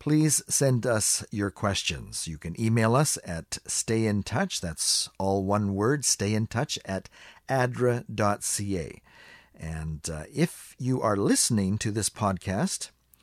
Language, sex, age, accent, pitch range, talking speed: English, male, 50-69, American, 95-125 Hz, 125 wpm